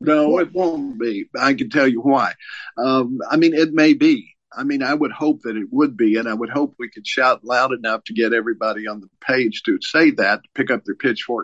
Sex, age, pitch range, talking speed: male, 50-69, 115-180 Hz, 245 wpm